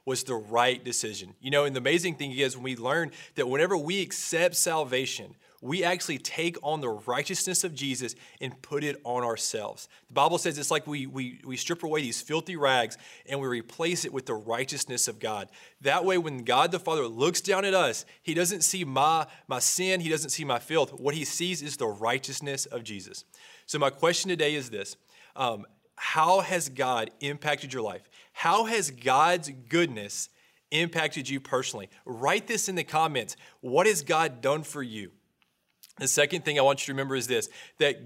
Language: English